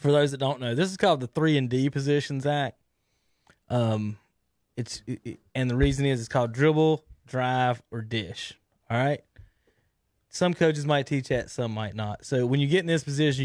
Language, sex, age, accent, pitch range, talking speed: English, male, 20-39, American, 115-145 Hz, 195 wpm